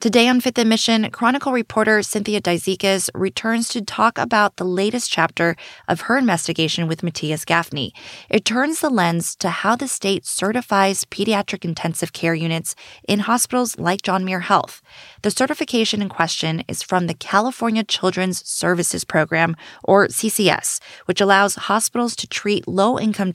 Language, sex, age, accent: English, female, 20-39, American